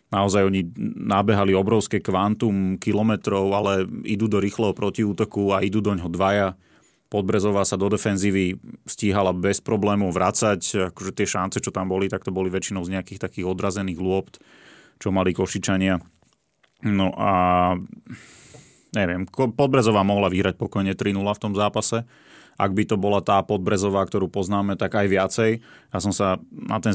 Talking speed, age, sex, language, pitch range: 150 wpm, 30-49, male, Slovak, 95-105 Hz